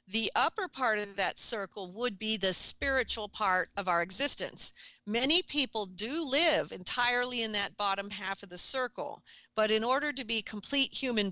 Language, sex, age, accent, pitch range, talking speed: English, female, 40-59, American, 195-235 Hz, 175 wpm